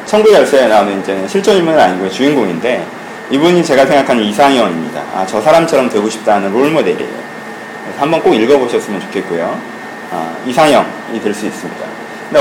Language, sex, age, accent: Korean, male, 30-49, native